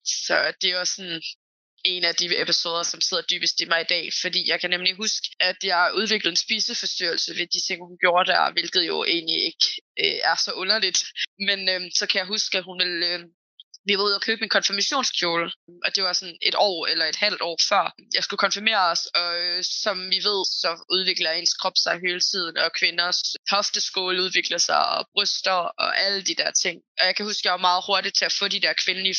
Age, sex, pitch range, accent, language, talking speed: 20-39, female, 175-210 Hz, native, Danish, 225 wpm